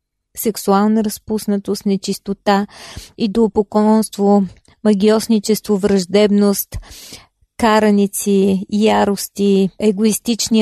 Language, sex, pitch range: Bulgarian, female, 200-230 Hz